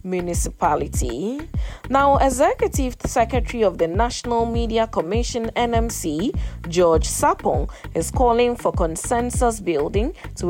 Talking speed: 105 wpm